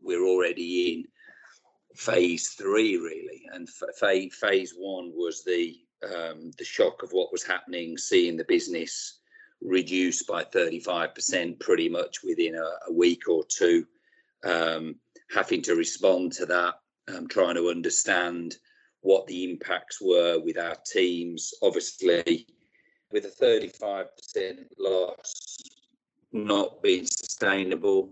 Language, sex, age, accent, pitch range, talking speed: English, male, 40-59, British, 275-420 Hz, 120 wpm